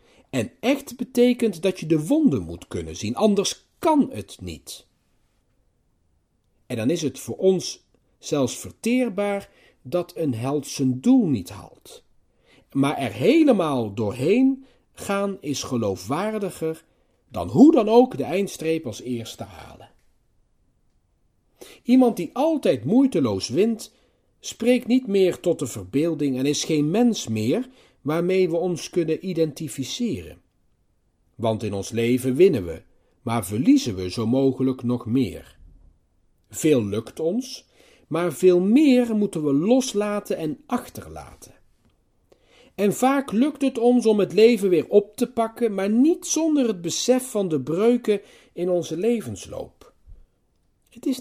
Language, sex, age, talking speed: Dutch, male, 40-59, 135 wpm